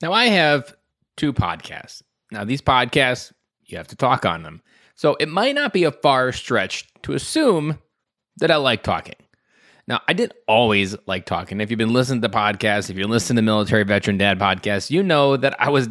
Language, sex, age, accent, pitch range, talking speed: English, male, 20-39, American, 110-165 Hz, 205 wpm